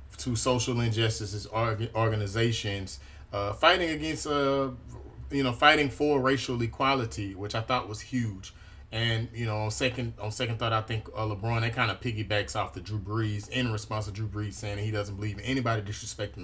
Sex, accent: male, American